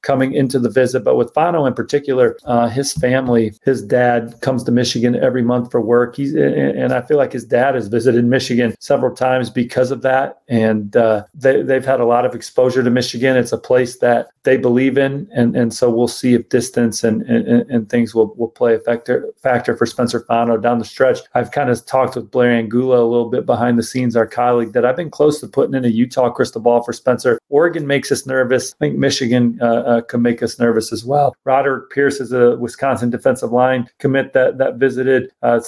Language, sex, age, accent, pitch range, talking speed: English, male, 40-59, American, 120-130 Hz, 220 wpm